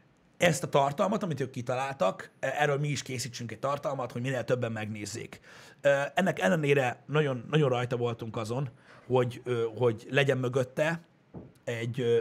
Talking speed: 140 wpm